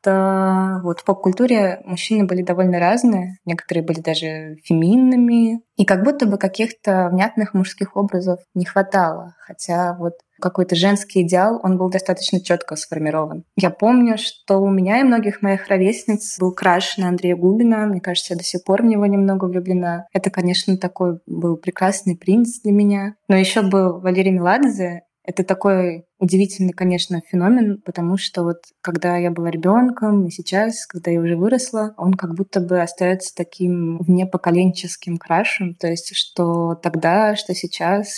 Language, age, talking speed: Russian, 20-39, 155 wpm